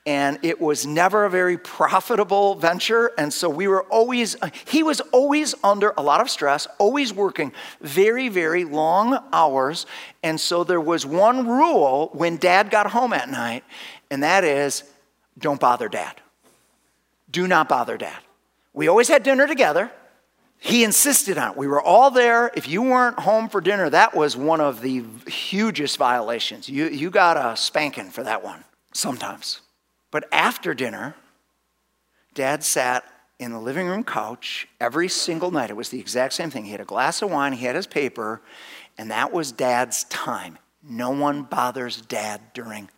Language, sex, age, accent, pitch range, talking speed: English, male, 50-69, American, 145-225 Hz, 170 wpm